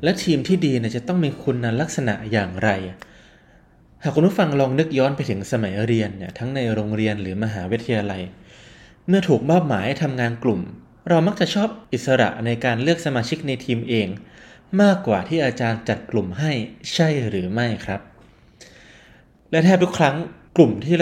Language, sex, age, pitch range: Thai, male, 20-39, 110-155 Hz